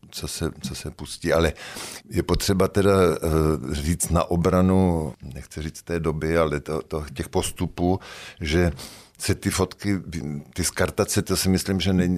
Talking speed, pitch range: 160 wpm, 75-90 Hz